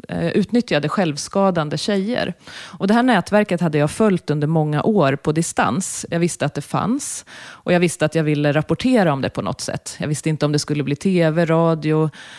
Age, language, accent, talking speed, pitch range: 30-49, Swedish, native, 200 wpm, 150-205 Hz